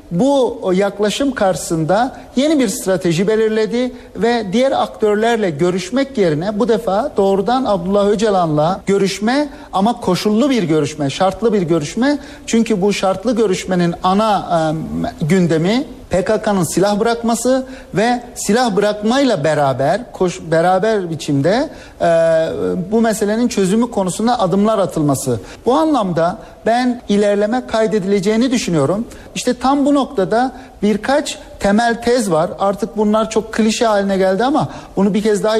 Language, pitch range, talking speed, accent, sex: Turkish, 190-235 Hz, 125 wpm, native, male